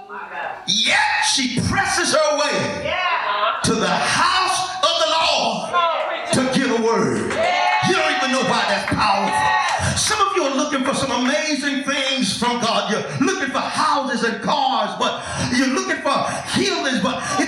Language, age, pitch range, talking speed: English, 40-59, 265-355 Hz, 155 wpm